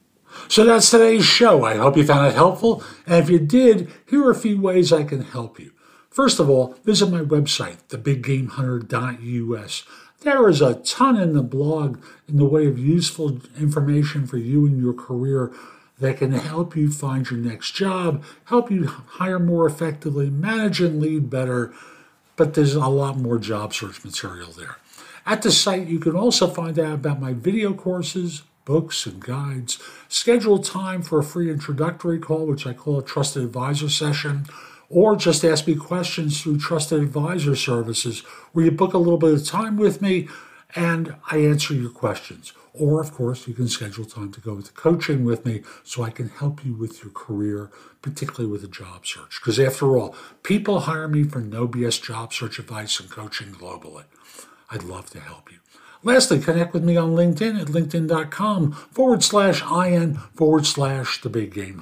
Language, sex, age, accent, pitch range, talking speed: English, male, 50-69, American, 125-175 Hz, 185 wpm